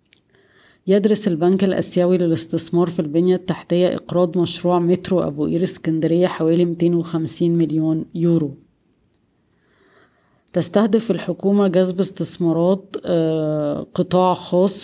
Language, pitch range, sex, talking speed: Arabic, 165-185 Hz, female, 95 wpm